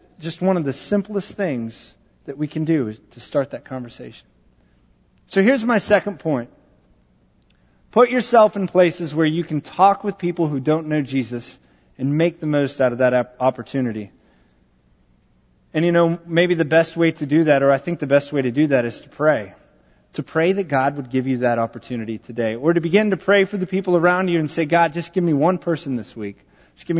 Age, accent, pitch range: 30-49, American, 130-195 Hz